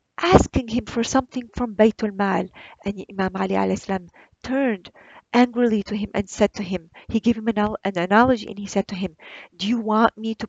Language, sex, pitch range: English, female, 195-230 Hz